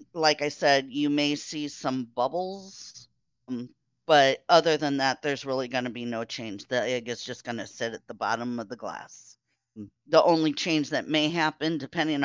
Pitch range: 125-155 Hz